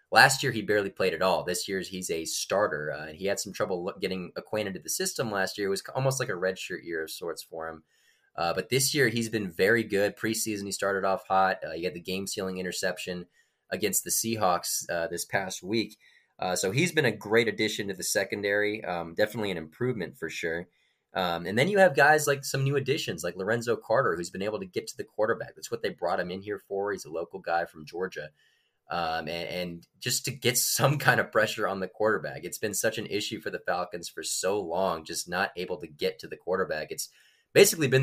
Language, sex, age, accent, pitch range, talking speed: English, male, 20-39, American, 95-135 Hz, 230 wpm